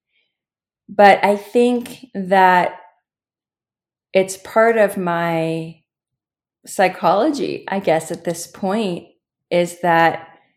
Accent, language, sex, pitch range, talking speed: American, English, female, 160-200 Hz, 90 wpm